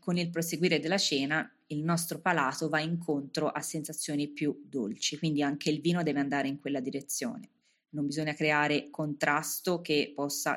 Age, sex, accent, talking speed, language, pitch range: 20-39, female, native, 165 wpm, Italian, 145-185 Hz